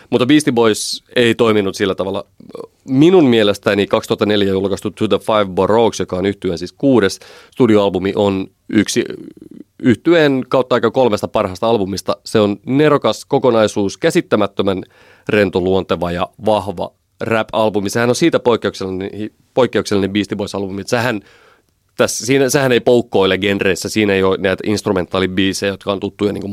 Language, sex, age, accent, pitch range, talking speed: Finnish, male, 30-49, native, 95-115 Hz, 135 wpm